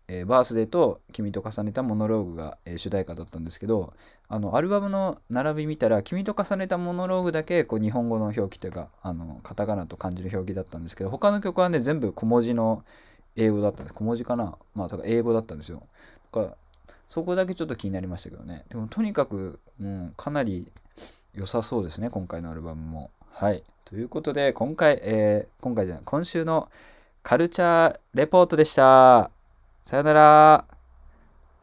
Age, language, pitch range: 20-39, Japanese, 95-135 Hz